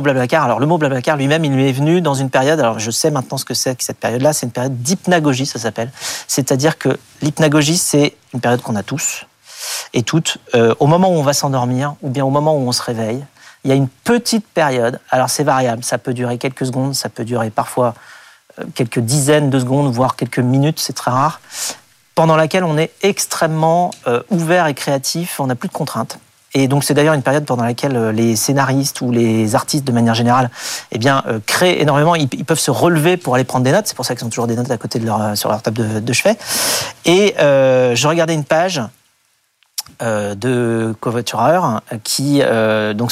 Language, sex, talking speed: French, male, 225 wpm